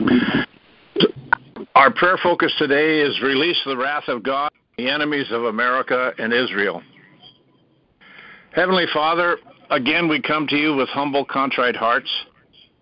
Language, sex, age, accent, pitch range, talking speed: English, male, 60-79, American, 130-155 Hz, 125 wpm